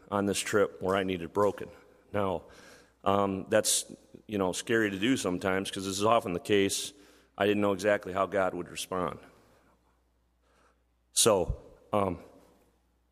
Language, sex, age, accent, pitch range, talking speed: English, male, 40-59, American, 85-105 Hz, 145 wpm